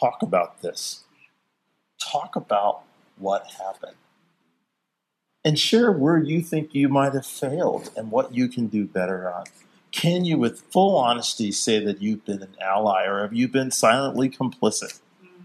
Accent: American